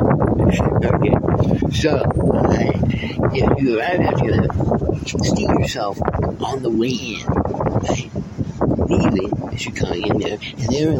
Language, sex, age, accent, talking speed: English, male, 60-79, American, 130 wpm